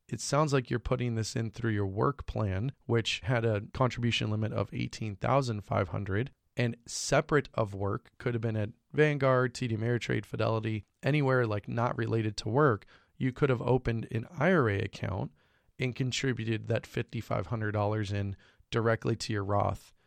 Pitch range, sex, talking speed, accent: 105-125 Hz, male, 155 wpm, American